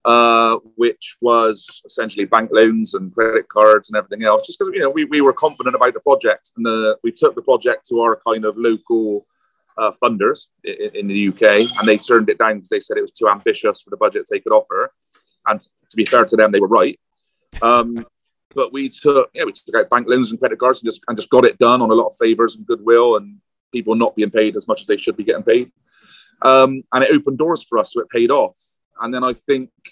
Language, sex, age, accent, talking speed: English, male, 30-49, British, 245 wpm